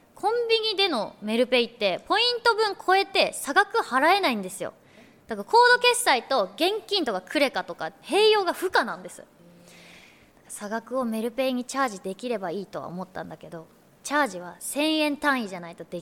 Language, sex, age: Japanese, female, 20-39